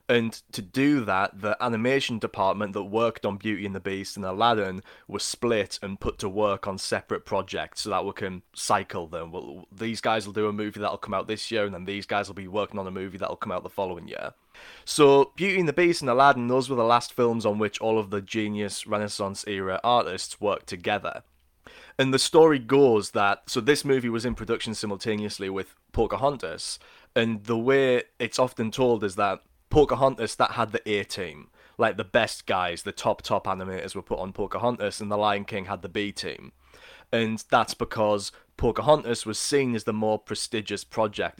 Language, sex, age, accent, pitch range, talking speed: English, male, 20-39, British, 100-120 Hz, 205 wpm